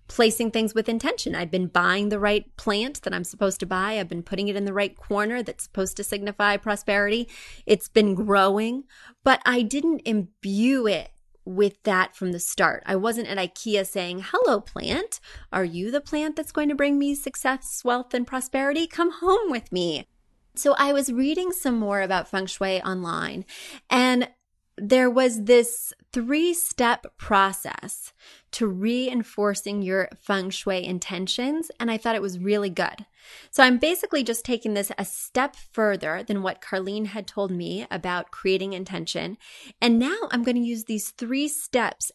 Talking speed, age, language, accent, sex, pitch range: 170 wpm, 30-49, English, American, female, 195-255 Hz